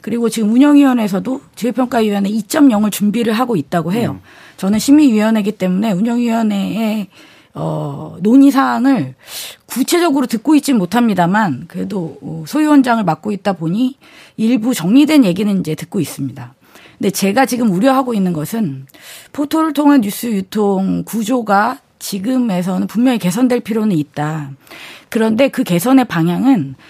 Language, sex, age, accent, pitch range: Korean, female, 40-59, native, 185-265 Hz